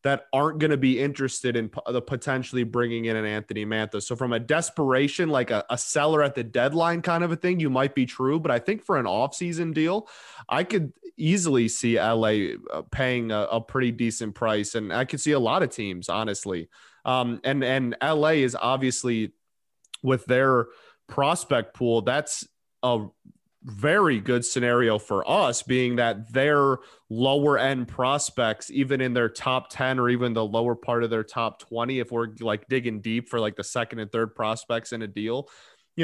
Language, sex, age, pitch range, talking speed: English, male, 20-39, 110-135 Hz, 190 wpm